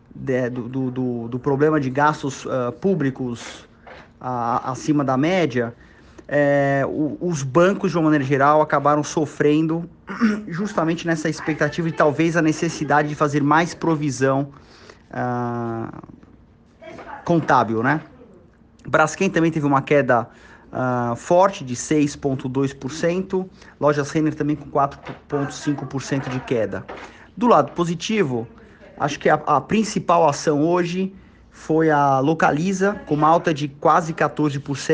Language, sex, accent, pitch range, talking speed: Portuguese, male, Brazilian, 135-160 Hz, 110 wpm